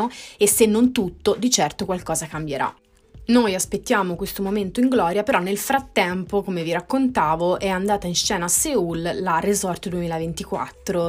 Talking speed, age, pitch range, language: 155 wpm, 20-39, 165-200 Hz, Italian